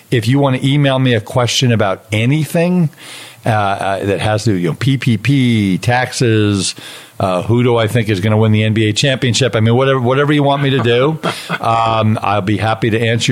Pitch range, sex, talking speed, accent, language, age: 105-125 Hz, male, 205 wpm, American, English, 50-69